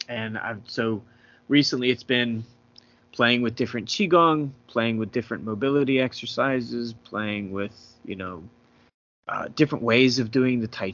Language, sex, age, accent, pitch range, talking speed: English, male, 30-49, American, 95-125 Hz, 145 wpm